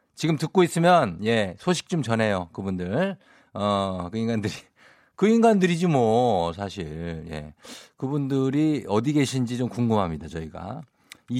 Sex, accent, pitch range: male, native, 95-140 Hz